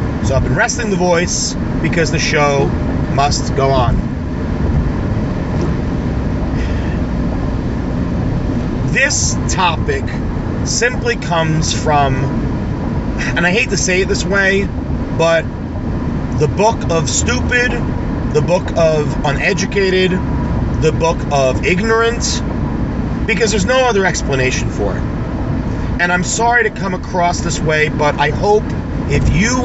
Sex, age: male, 30-49